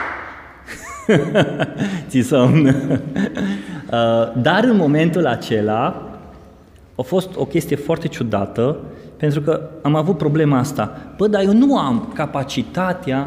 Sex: male